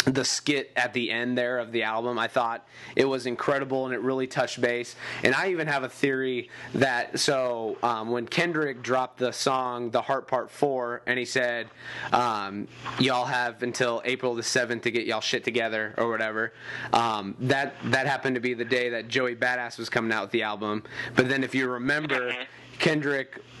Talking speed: 195 wpm